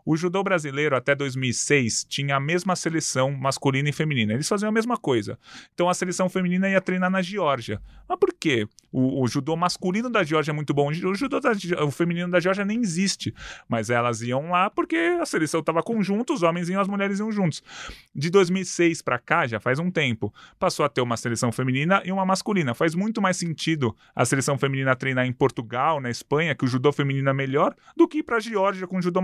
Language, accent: Portuguese, Brazilian